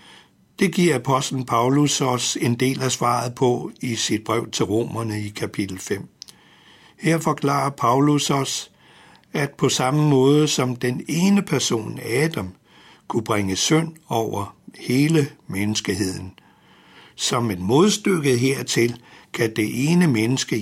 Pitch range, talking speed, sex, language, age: 115-145 Hz, 130 wpm, male, Danish, 60-79